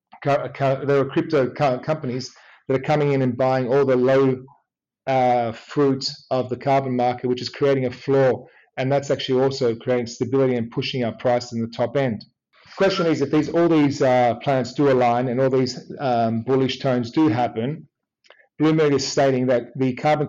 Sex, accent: male, Australian